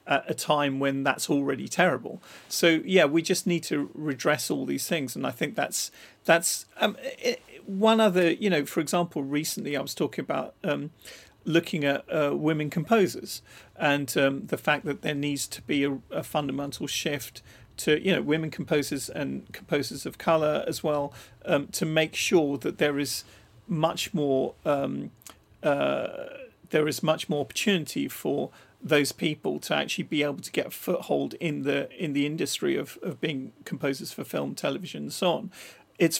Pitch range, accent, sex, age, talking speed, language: 135-165 Hz, British, male, 40-59, 180 wpm, English